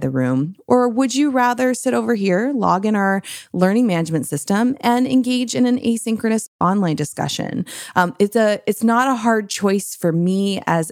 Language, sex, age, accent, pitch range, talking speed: English, female, 30-49, American, 160-215 Hz, 175 wpm